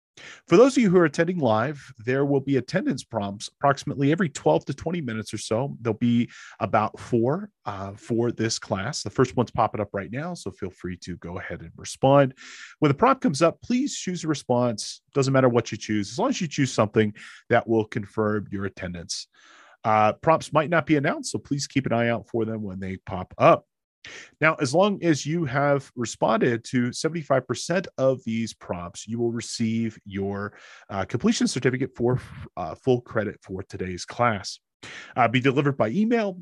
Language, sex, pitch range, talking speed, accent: English, male, 105-145 Hz, 195 wpm, American